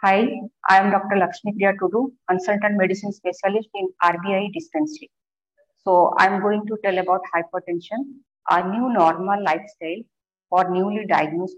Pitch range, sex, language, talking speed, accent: 175-240 Hz, female, English, 135 wpm, Indian